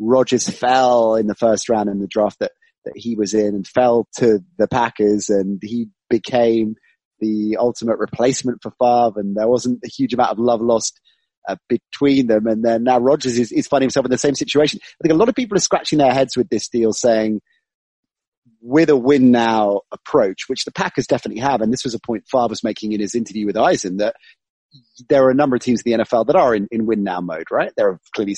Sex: male